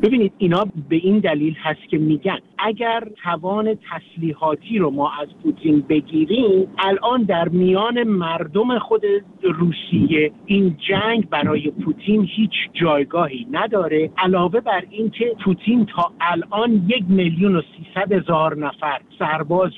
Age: 50-69